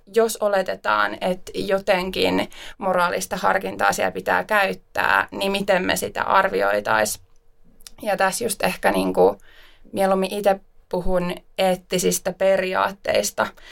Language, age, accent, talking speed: Finnish, 20-39, native, 110 wpm